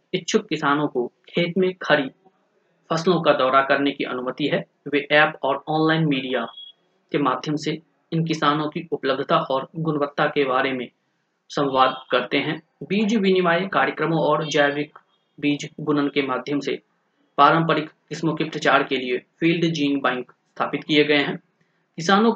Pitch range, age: 140-175 Hz, 30-49